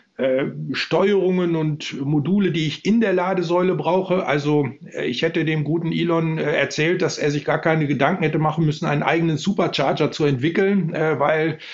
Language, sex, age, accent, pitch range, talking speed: German, male, 50-69, German, 145-175 Hz, 160 wpm